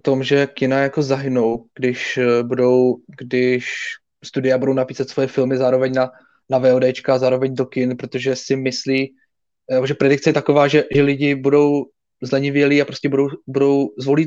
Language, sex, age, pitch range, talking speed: Czech, male, 20-39, 130-150 Hz, 160 wpm